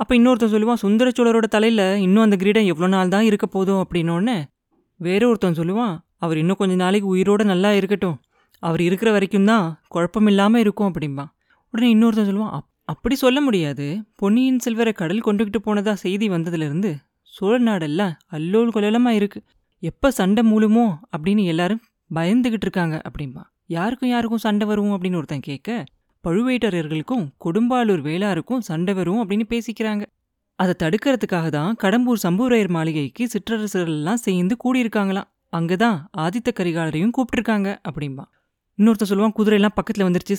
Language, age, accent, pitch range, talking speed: Tamil, 20-39, native, 170-220 Hz, 135 wpm